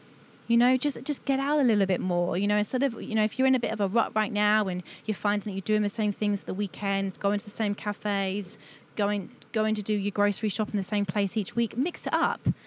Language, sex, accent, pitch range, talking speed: English, female, British, 185-225 Hz, 275 wpm